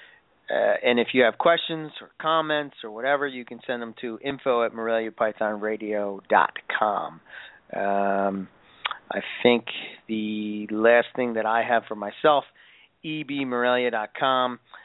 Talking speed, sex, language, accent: 115 wpm, male, English, American